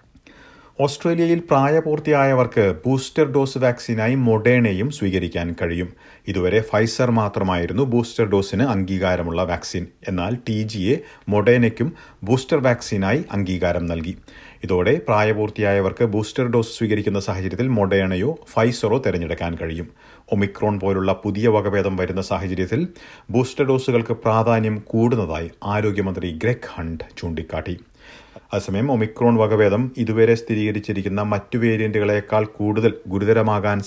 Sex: male